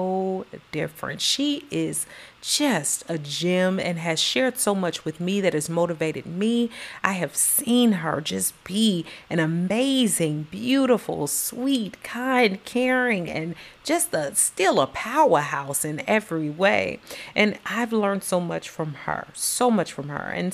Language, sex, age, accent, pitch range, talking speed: English, female, 40-59, American, 165-230 Hz, 145 wpm